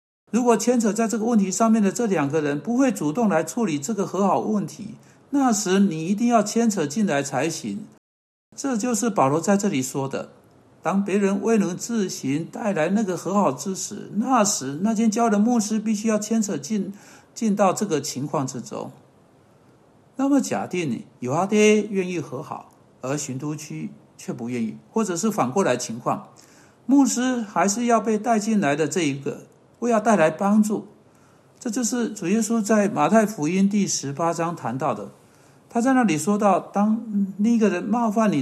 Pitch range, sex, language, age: 160-225 Hz, male, Chinese, 60-79